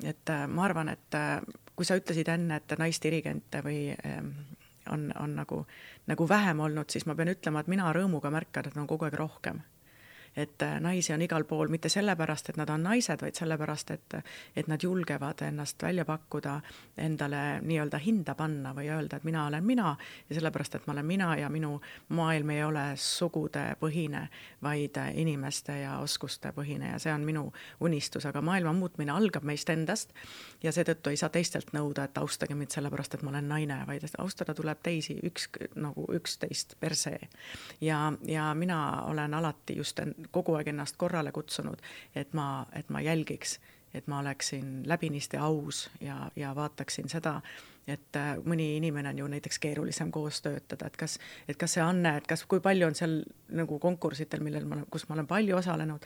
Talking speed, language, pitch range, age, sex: 180 wpm, English, 145-165 Hz, 30-49, female